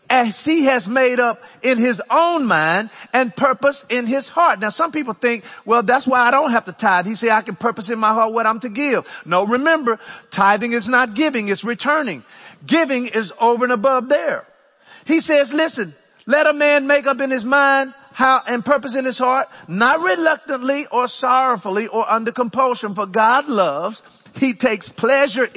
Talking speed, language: 190 wpm, English